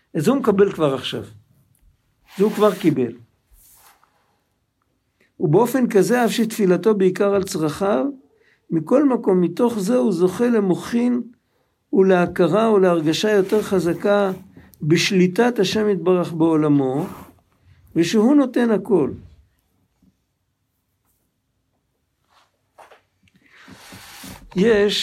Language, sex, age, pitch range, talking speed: Hebrew, male, 60-79, 145-210 Hz, 85 wpm